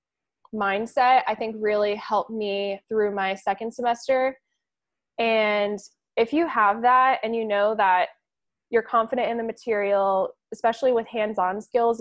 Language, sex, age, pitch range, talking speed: English, female, 10-29, 205-240 Hz, 140 wpm